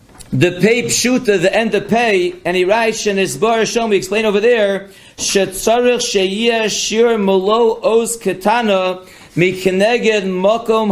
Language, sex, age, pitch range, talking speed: English, male, 40-59, 190-230 Hz, 115 wpm